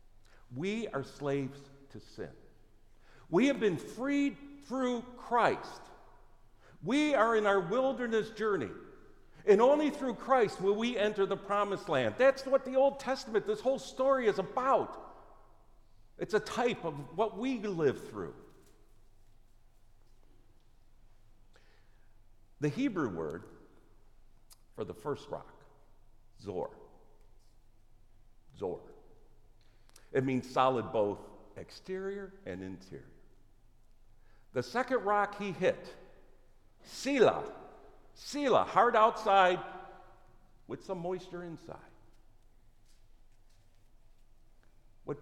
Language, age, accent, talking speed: English, 60-79, American, 100 wpm